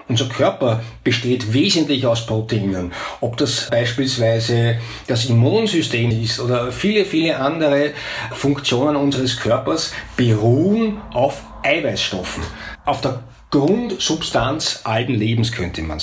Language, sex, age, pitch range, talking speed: German, male, 60-79, 115-150 Hz, 110 wpm